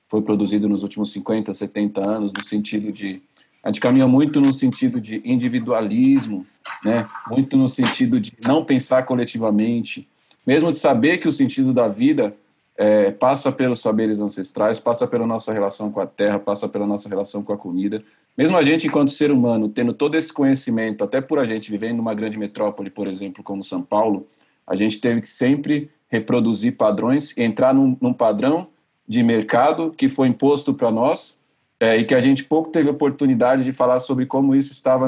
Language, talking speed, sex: Portuguese, 185 wpm, male